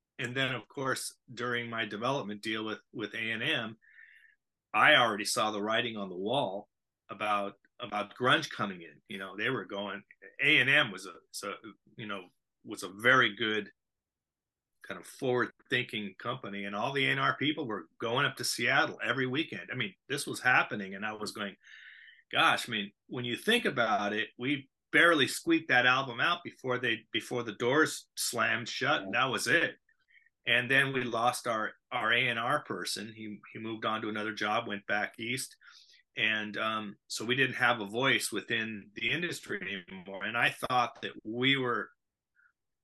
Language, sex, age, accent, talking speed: English, male, 40-59, American, 180 wpm